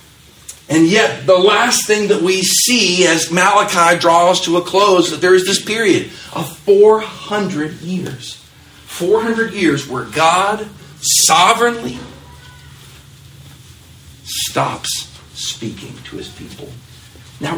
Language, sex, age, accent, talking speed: English, male, 50-69, American, 115 wpm